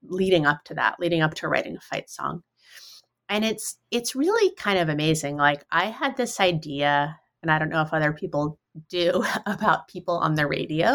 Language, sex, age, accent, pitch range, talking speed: English, female, 30-49, American, 165-220 Hz, 195 wpm